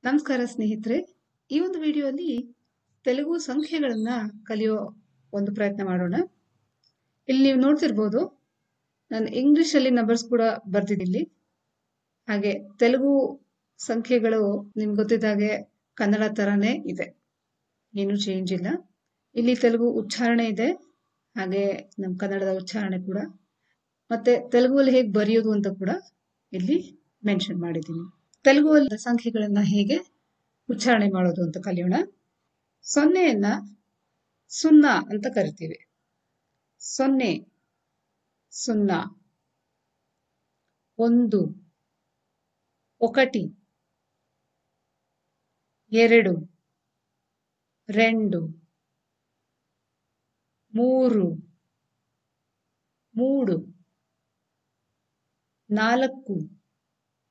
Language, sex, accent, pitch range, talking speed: Kannada, female, native, 190-255 Hz, 70 wpm